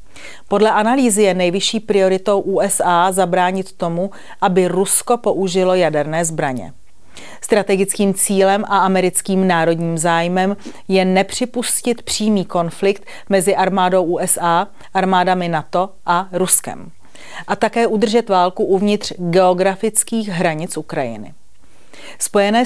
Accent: native